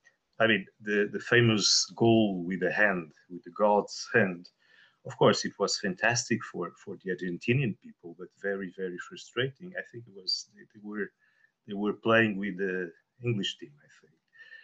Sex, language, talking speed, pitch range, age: male, English, 175 wpm, 95-120 Hz, 40-59